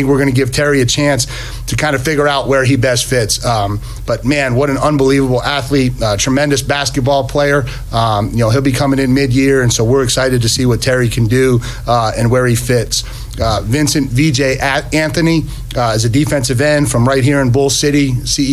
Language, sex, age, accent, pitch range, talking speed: English, male, 40-59, American, 120-140 Hz, 215 wpm